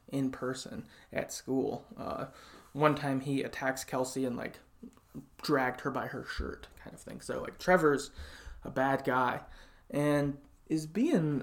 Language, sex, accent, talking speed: English, male, American, 150 wpm